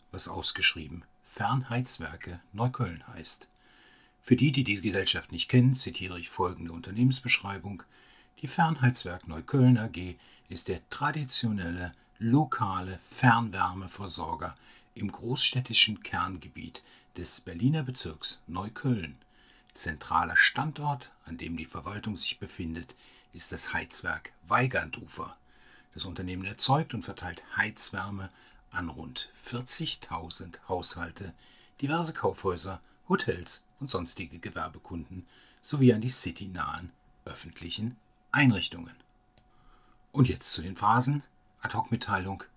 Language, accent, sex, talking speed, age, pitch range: German, German, male, 105 wpm, 60-79, 90-125 Hz